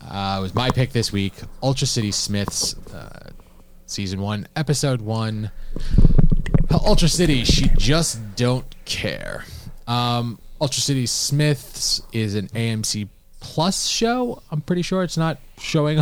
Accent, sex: American, male